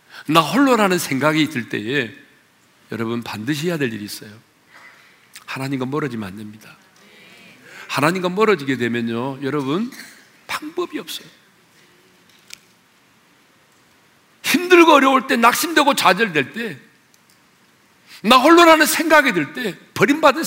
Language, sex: Korean, male